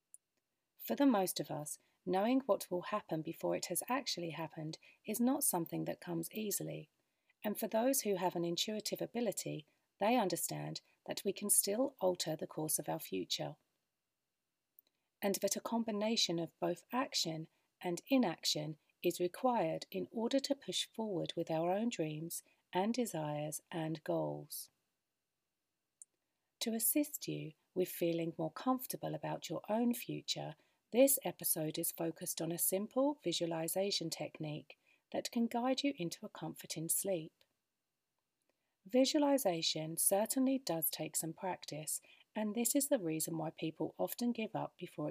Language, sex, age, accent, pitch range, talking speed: English, female, 40-59, British, 165-220 Hz, 145 wpm